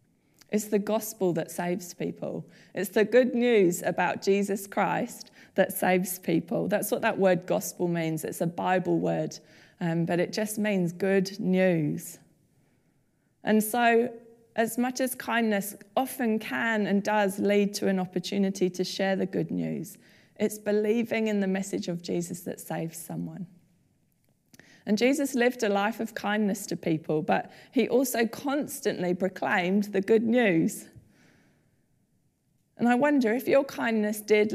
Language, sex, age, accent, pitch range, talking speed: English, female, 20-39, British, 180-225 Hz, 150 wpm